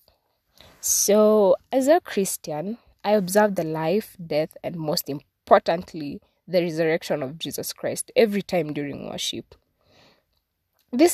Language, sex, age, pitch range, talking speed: English, female, 20-39, 180-260 Hz, 120 wpm